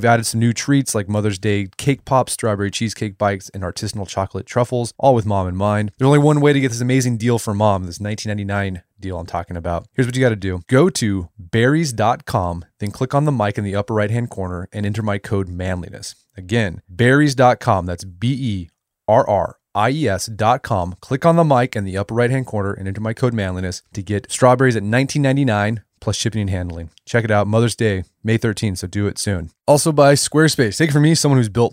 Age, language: 30-49, English